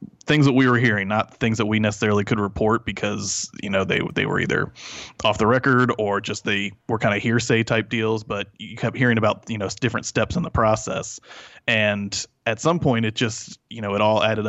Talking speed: 225 wpm